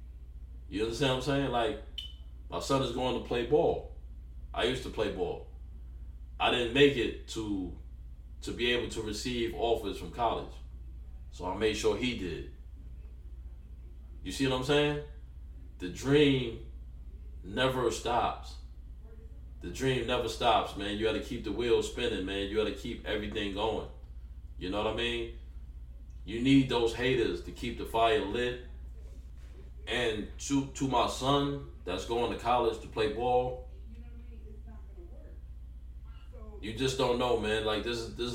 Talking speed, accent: 155 wpm, American